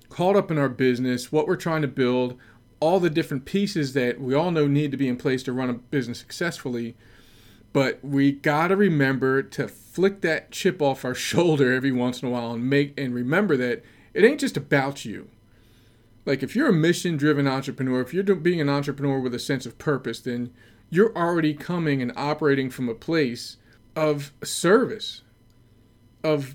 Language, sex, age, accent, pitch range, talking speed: English, male, 40-59, American, 125-165 Hz, 185 wpm